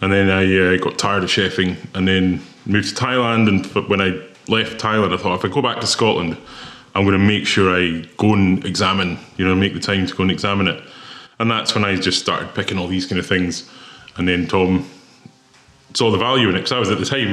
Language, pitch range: English, 95-110 Hz